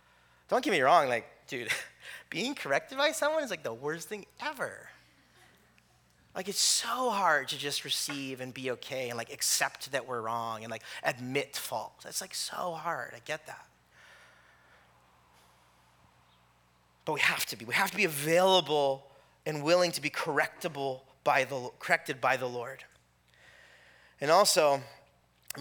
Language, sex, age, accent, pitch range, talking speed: English, male, 30-49, American, 130-215 Hz, 155 wpm